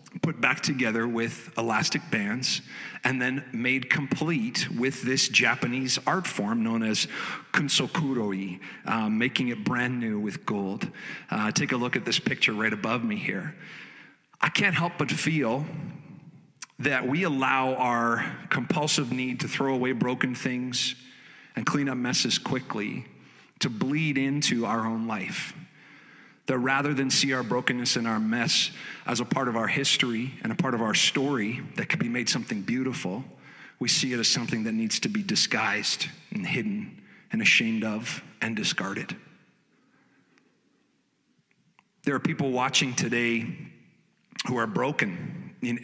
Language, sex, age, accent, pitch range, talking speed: English, male, 40-59, American, 120-165 Hz, 150 wpm